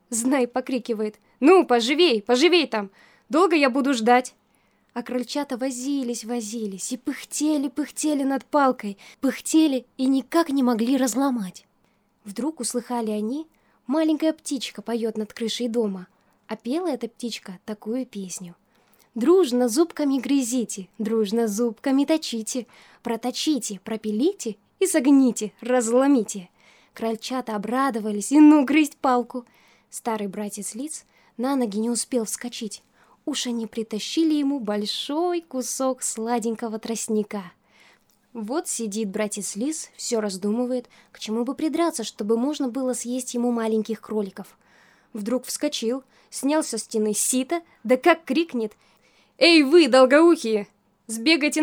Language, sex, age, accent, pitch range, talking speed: Russian, female, 10-29, native, 220-280 Hz, 115 wpm